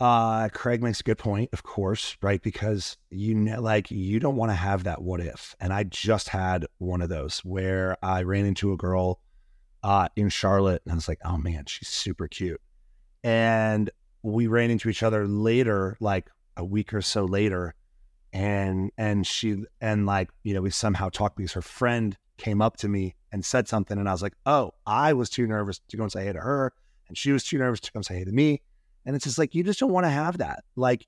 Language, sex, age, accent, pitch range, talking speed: English, male, 30-49, American, 95-110 Hz, 230 wpm